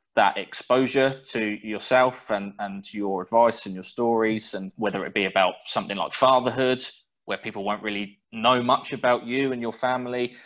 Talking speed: 170 wpm